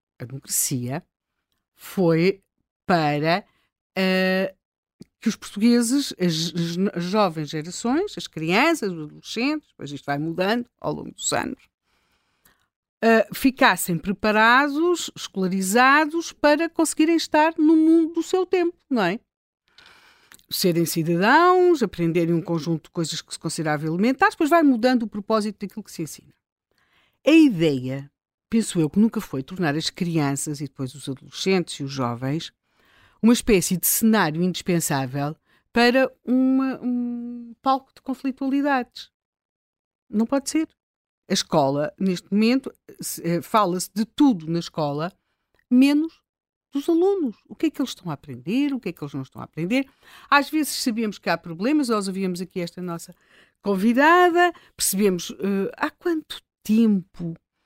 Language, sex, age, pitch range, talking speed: Portuguese, female, 50-69, 170-270 Hz, 135 wpm